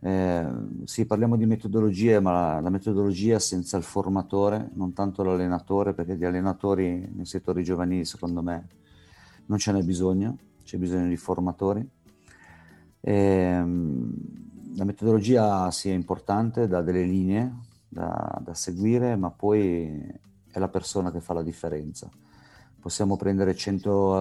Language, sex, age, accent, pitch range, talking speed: Italian, male, 50-69, native, 85-100 Hz, 130 wpm